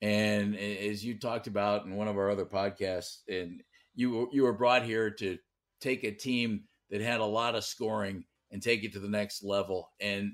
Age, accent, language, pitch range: 50-69, American, English, 100-120 Hz